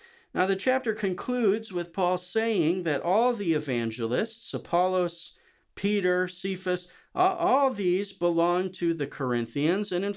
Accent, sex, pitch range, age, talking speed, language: American, male, 150-195 Hz, 40-59, 135 wpm, English